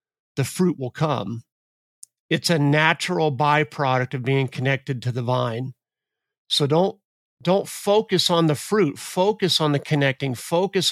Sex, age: male, 50-69